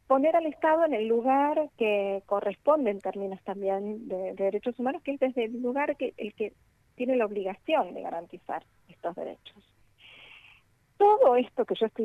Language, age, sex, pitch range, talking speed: Spanish, 40-59, female, 195-230 Hz, 175 wpm